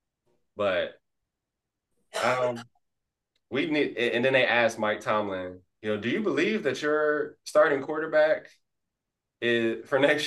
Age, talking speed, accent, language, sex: 20-39, 125 wpm, American, English, male